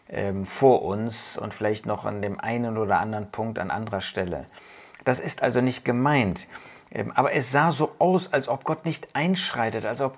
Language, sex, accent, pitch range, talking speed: German, male, German, 110-130 Hz, 185 wpm